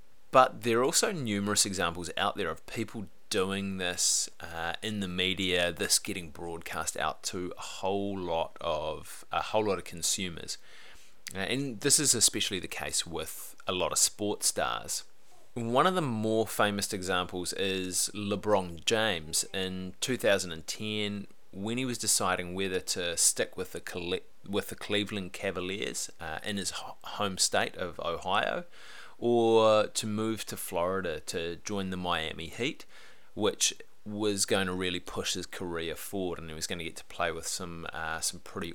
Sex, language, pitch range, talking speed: male, English, 90-110 Hz, 165 wpm